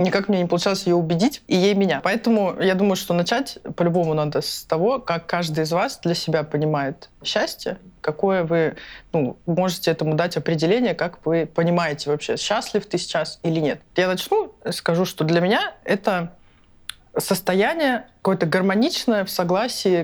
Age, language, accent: 20-39, Russian, native